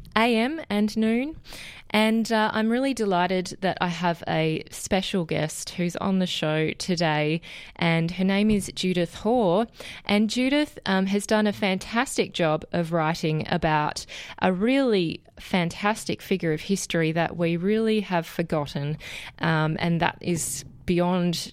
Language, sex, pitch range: English, female, 160-195 Hz